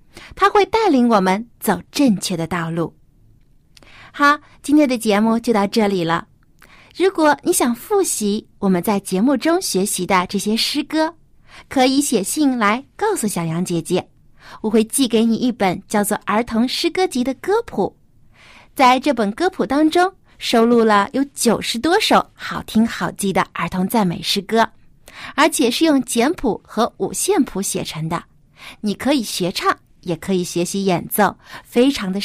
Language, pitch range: Chinese, 195-285 Hz